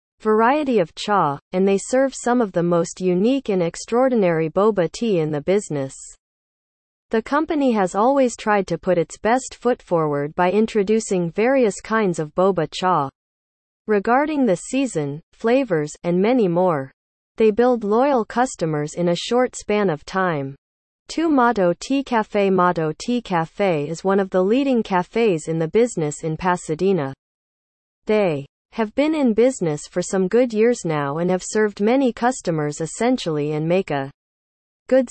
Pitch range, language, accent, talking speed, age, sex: 160-230 Hz, English, American, 155 wpm, 40-59, female